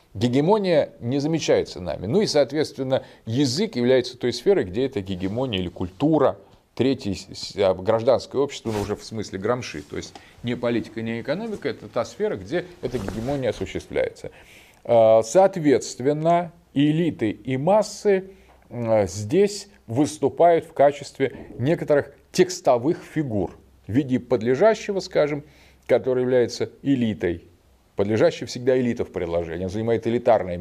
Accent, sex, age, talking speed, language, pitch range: native, male, 30-49, 125 wpm, Russian, 105-155 Hz